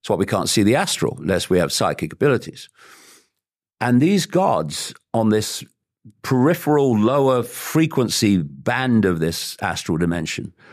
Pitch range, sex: 95-135 Hz, male